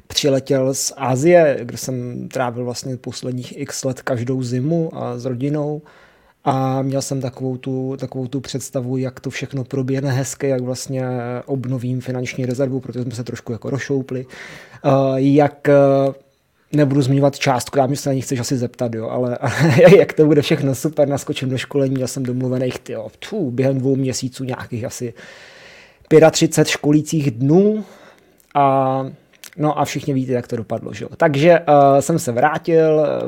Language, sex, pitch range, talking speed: Czech, male, 130-145 Hz, 160 wpm